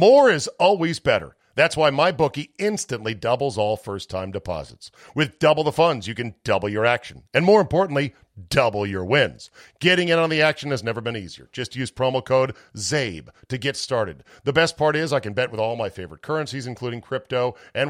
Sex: male